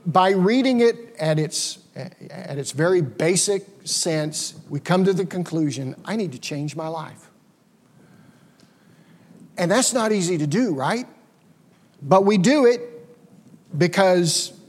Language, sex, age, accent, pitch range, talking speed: English, male, 50-69, American, 160-195 Hz, 135 wpm